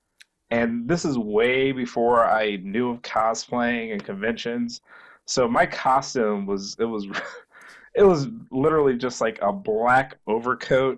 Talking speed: 135 wpm